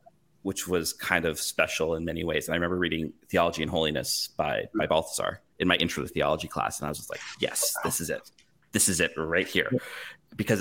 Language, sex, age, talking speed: English, male, 30-49, 220 wpm